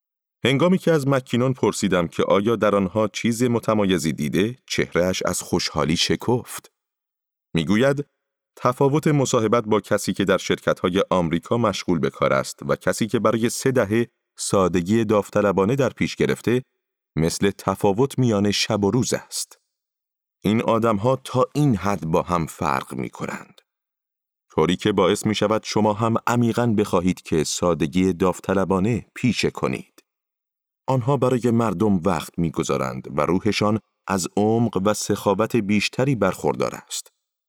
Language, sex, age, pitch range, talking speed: Persian, male, 30-49, 95-125 Hz, 140 wpm